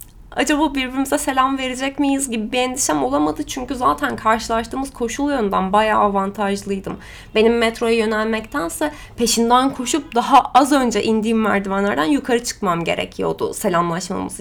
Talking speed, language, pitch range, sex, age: 125 wpm, Turkish, 220-285 Hz, female, 20-39